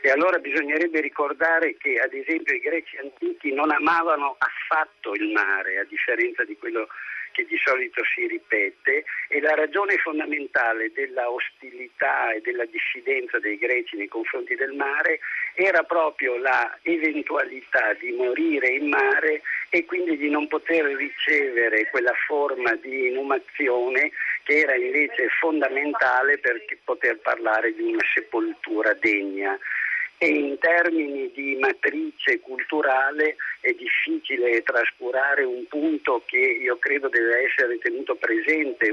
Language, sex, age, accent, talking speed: Italian, male, 50-69, native, 130 wpm